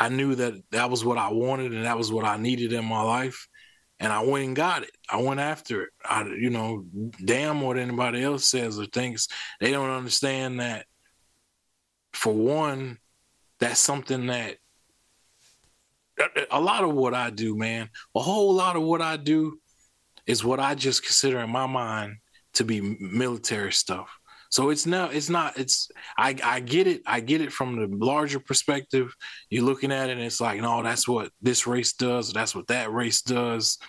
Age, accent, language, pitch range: 20-39, American, English, 115-135 Hz